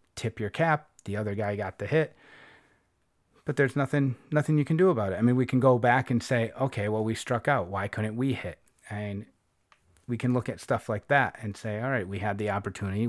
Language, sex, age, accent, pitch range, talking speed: English, male, 30-49, American, 100-125 Hz, 235 wpm